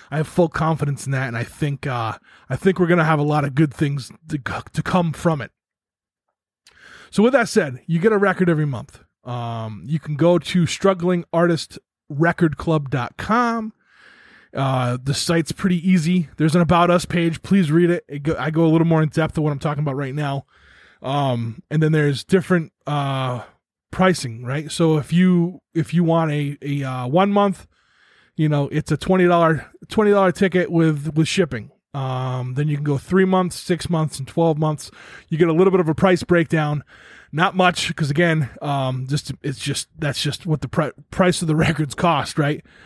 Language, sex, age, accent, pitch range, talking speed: English, male, 20-39, American, 140-175 Hz, 195 wpm